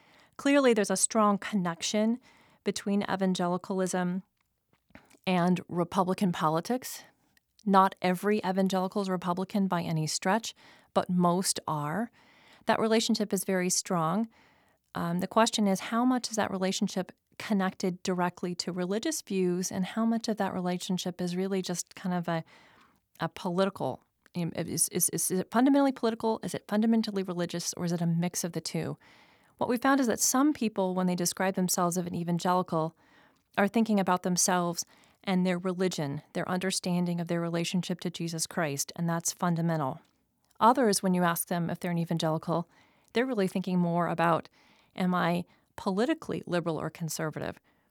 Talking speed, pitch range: 150 wpm, 175-210 Hz